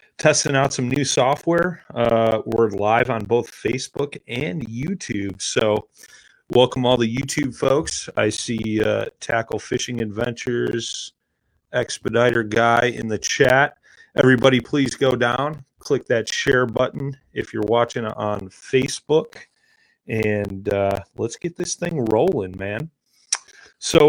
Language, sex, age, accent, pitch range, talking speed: English, male, 30-49, American, 110-135 Hz, 130 wpm